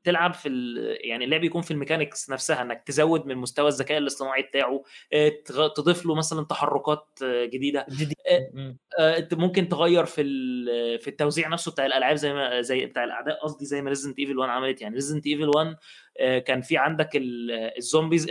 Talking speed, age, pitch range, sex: 155 wpm, 20-39, 135-165 Hz, male